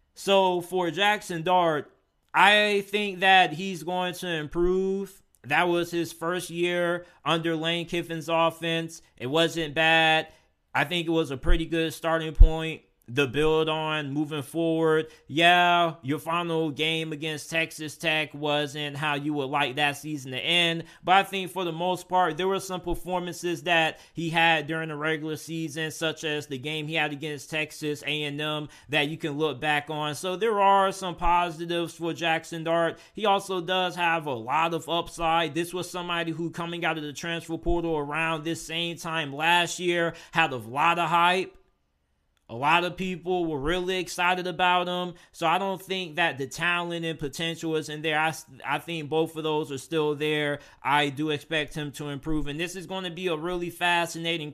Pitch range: 150-175 Hz